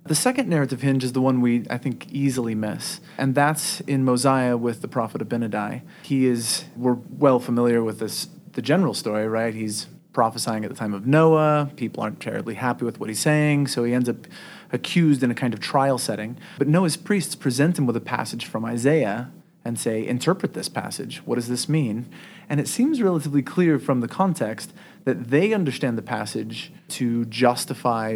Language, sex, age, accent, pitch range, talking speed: English, male, 30-49, American, 115-145 Hz, 190 wpm